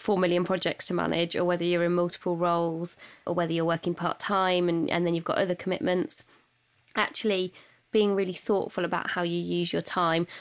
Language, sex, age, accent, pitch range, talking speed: English, female, 20-39, British, 170-190 Hz, 195 wpm